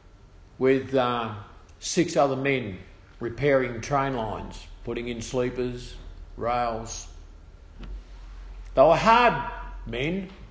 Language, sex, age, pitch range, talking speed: English, male, 50-69, 90-135 Hz, 90 wpm